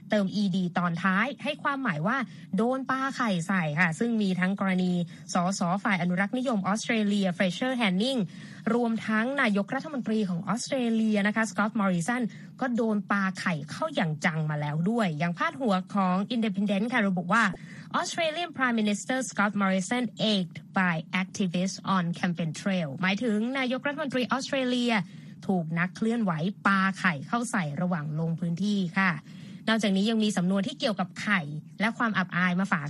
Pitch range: 185-230 Hz